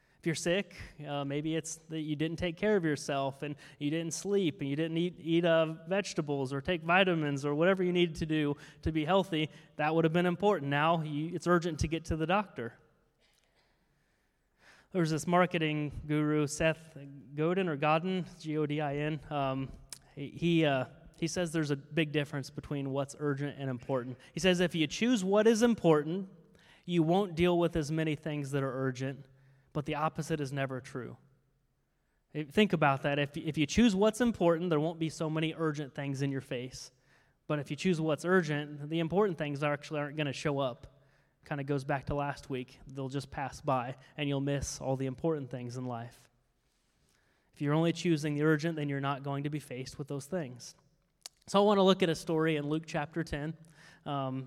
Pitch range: 140-165 Hz